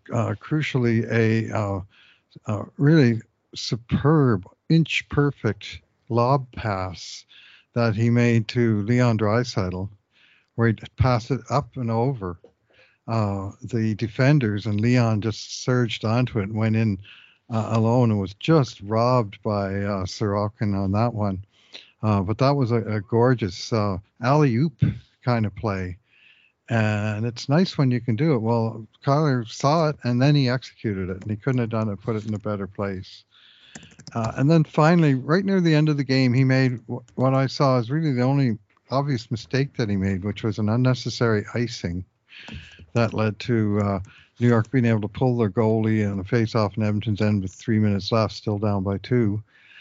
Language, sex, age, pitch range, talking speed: English, male, 60-79, 105-125 Hz, 175 wpm